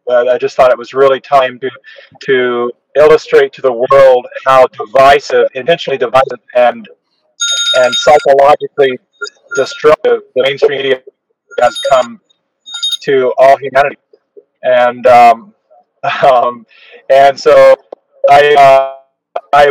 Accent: American